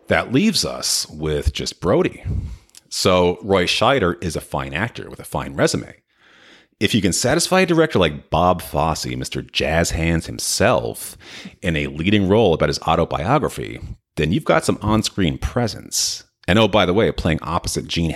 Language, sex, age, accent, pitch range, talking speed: English, male, 40-59, American, 75-105 Hz, 170 wpm